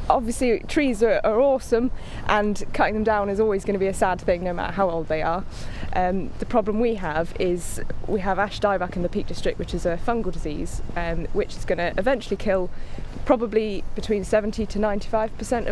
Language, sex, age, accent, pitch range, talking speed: English, female, 20-39, British, 205-235 Hz, 205 wpm